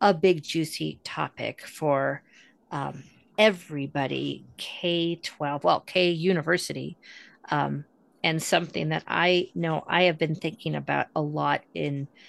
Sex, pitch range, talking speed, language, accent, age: female, 145-195 Hz, 120 wpm, English, American, 40-59